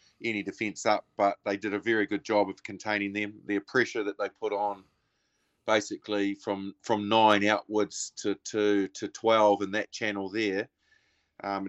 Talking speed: 170 wpm